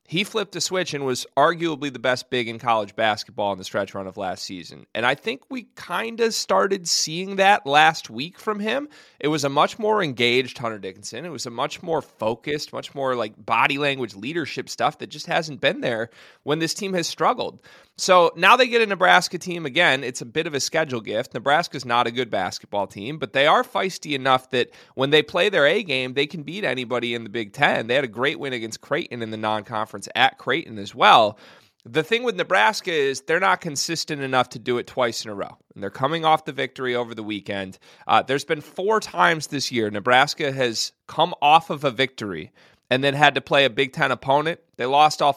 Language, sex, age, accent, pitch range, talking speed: English, male, 30-49, American, 120-160 Hz, 225 wpm